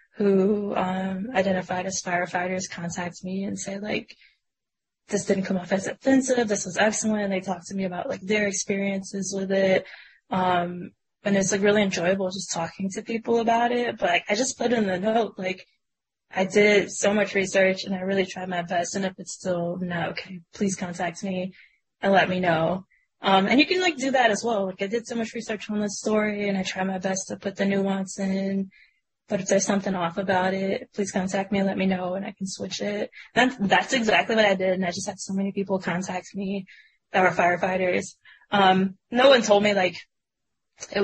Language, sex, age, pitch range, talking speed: English, female, 10-29, 185-205 Hz, 215 wpm